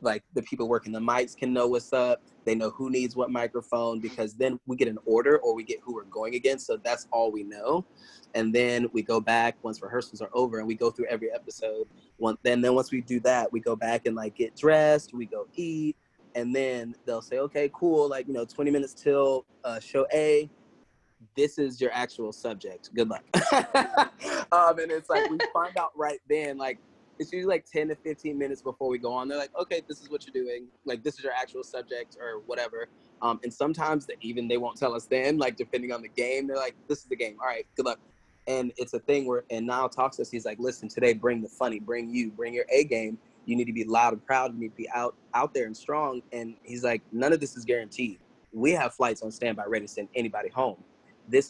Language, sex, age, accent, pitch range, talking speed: English, male, 20-39, American, 115-145 Hz, 240 wpm